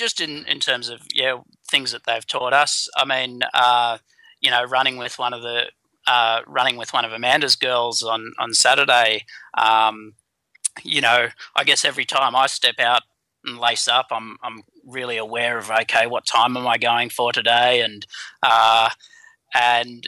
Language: English